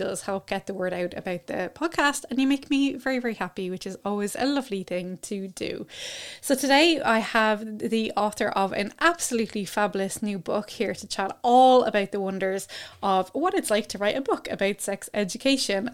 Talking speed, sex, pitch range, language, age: 205 wpm, female, 195-255 Hz, English, 20-39